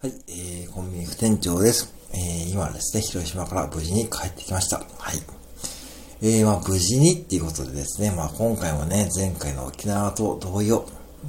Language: Japanese